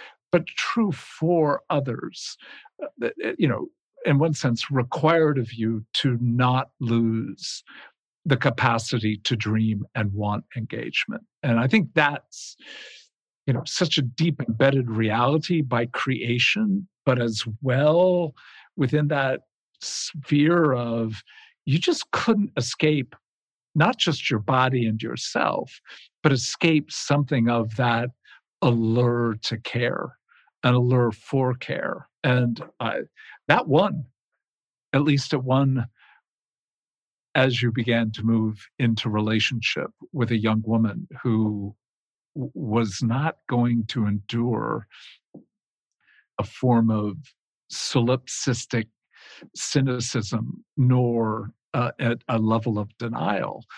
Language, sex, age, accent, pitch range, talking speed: English, male, 50-69, American, 115-145 Hz, 110 wpm